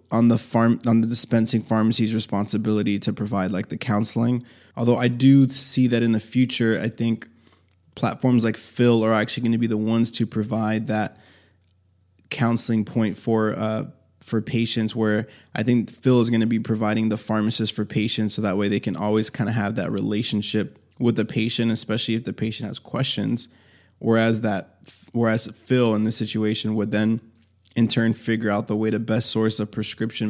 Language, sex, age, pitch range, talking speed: English, male, 20-39, 105-115 Hz, 190 wpm